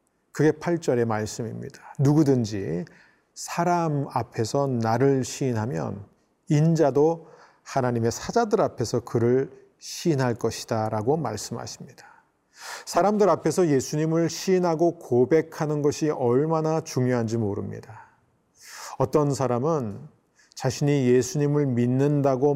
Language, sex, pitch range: Korean, male, 120-145 Hz